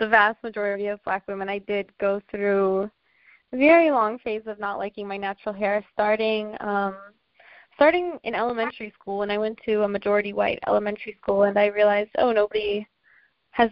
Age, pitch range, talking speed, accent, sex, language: 10-29, 205-230 Hz, 180 wpm, American, female, English